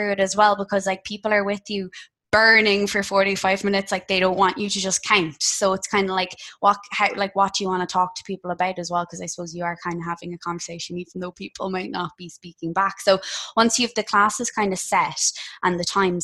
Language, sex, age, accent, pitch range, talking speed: English, female, 20-39, Irish, 175-195 Hz, 255 wpm